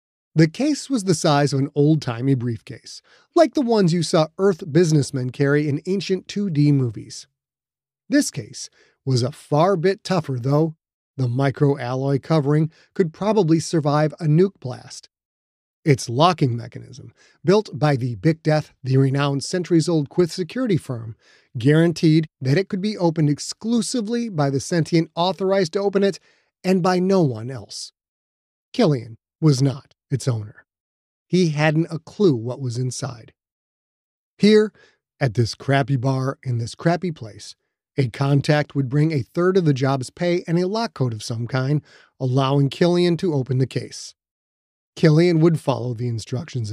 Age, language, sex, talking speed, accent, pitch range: 30-49, English, male, 155 wpm, American, 130-175 Hz